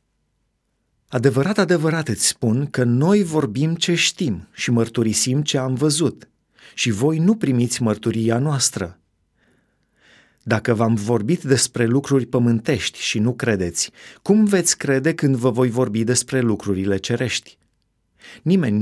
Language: Romanian